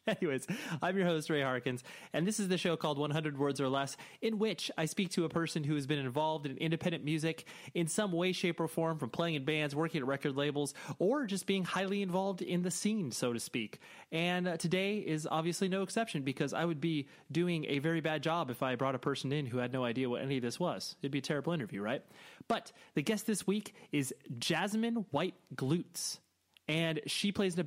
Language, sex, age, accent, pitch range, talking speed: English, male, 30-49, American, 135-180 Hz, 230 wpm